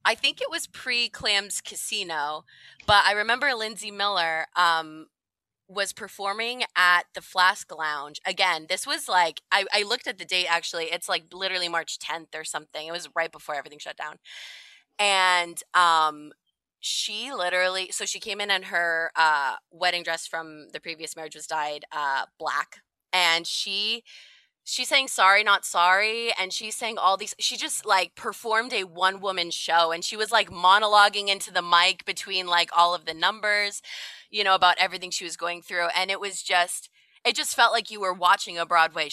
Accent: American